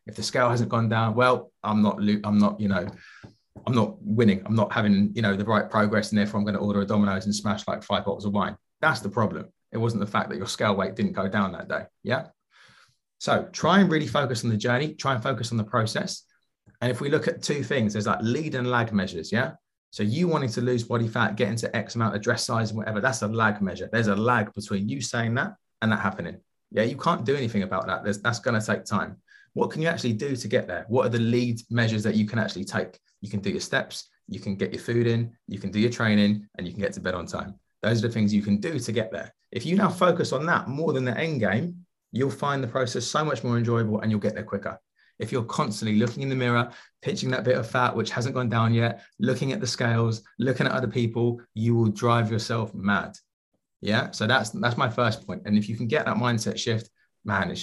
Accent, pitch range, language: British, 105-125 Hz, English